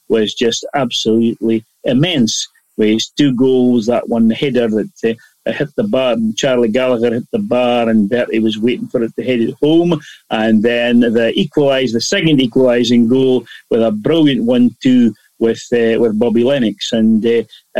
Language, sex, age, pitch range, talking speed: English, male, 40-59, 115-140 Hz, 170 wpm